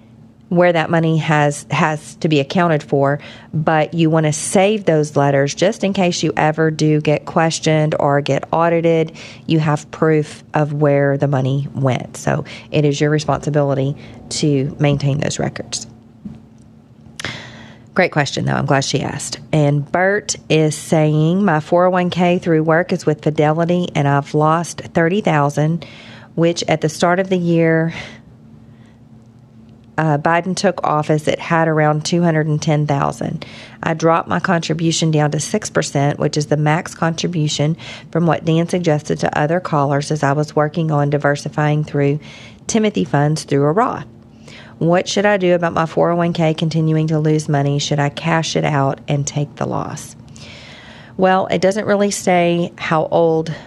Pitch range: 145-170 Hz